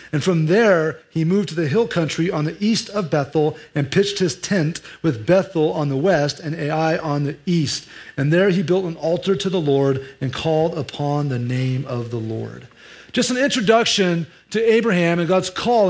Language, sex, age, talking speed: English, male, 40-59, 200 wpm